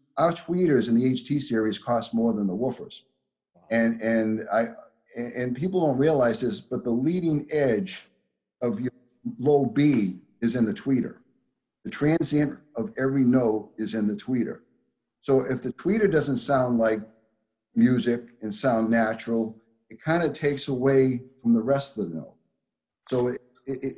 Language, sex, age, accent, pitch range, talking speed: English, male, 60-79, American, 110-135 Hz, 160 wpm